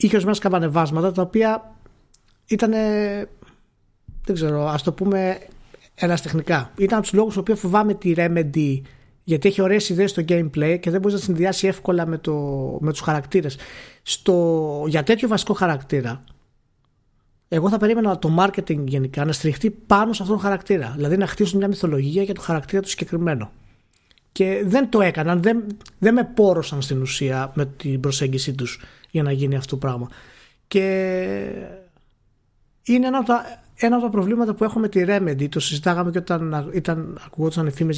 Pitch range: 140-205 Hz